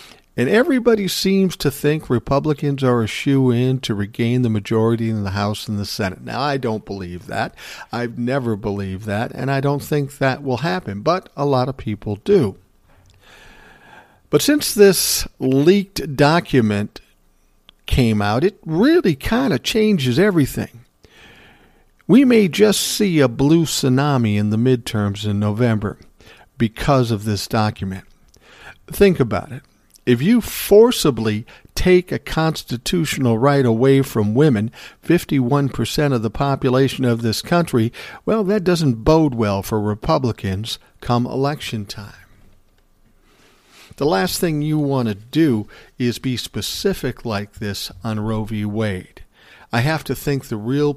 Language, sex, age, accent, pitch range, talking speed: English, male, 50-69, American, 110-145 Hz, 145 wpm